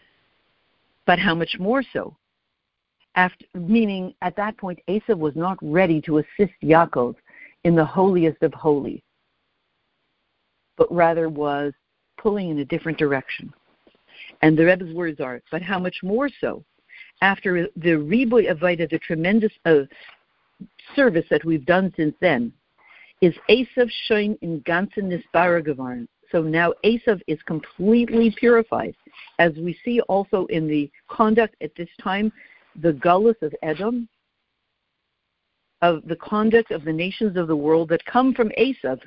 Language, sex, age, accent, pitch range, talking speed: English, female, 60-79, American, 160-210 Hz, 140 wpm